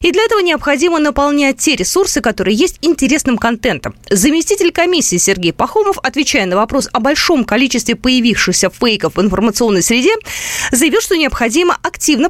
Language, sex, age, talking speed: Russian, female, 20-39, 145 wpm